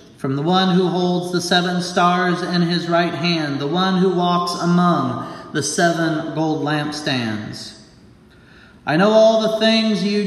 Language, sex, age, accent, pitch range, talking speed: English, male, 40-59, American, 175-210 Hz, 160 wpm